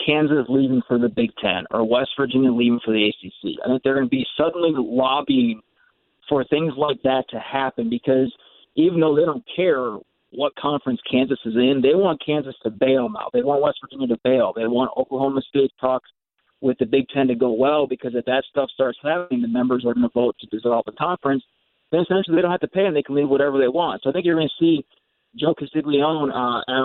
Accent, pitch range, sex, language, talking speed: American, 125-155 Hz, male, English, 230 wpm